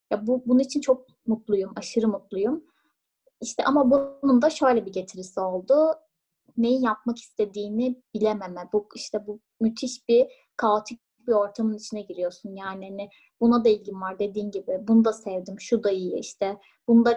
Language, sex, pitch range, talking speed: Turkish, female, 205-265 Hz, 160 wpm